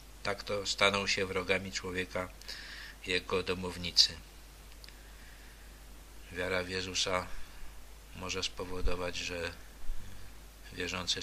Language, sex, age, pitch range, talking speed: Polish, male, 50-69, 85-100 Hz, 80 wpm